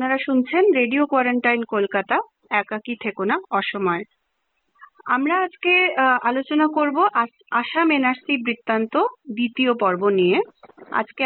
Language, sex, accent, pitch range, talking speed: English, female, Indian, 205-255 Hz, 105 wpm